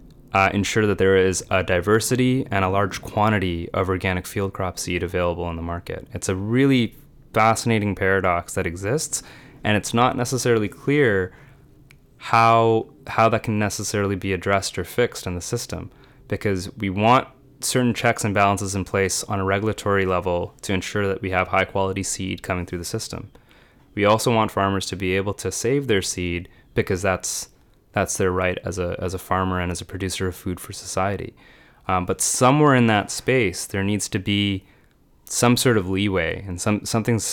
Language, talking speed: English, 185 wpm